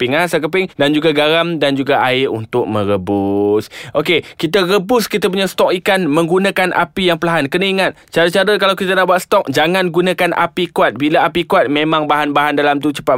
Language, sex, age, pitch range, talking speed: Malay, male, 20-39, 115-155 Hz, 185 wpm